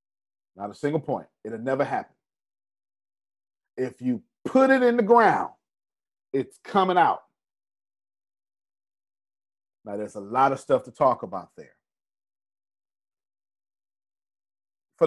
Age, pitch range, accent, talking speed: 40-59, 135-215 Hz, American, 110 wpm